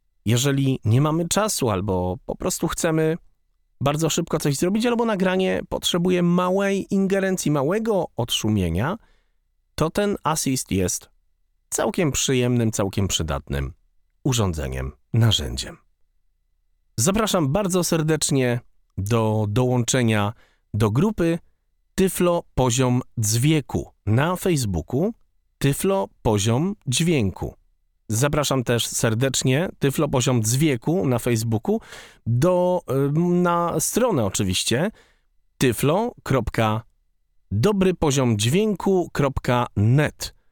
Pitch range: 100-170 Hz